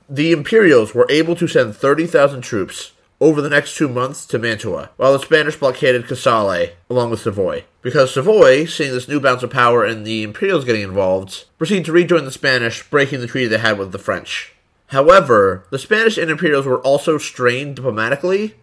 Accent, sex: American, male